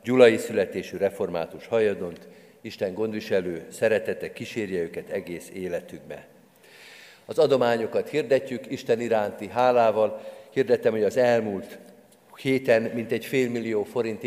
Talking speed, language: 105 wpm, Hungarian